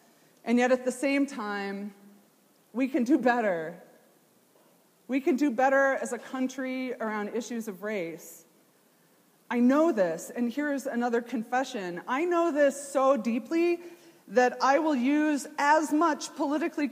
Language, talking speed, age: English, 140 wpm, 30-49